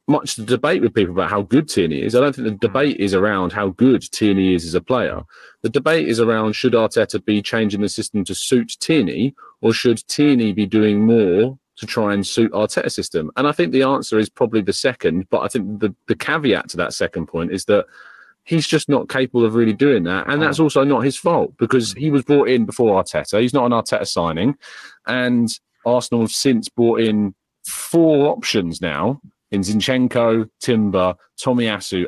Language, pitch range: English, 105-130 Hz